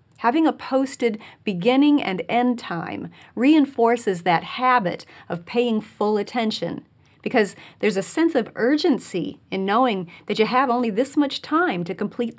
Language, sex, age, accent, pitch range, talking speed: English, female, 40-59, American, 180-250 Hz, 150 wpm